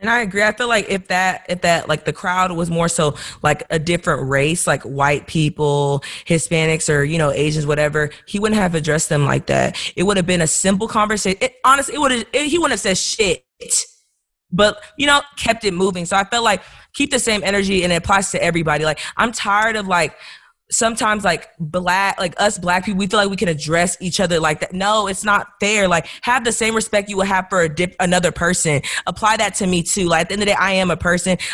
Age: 20-39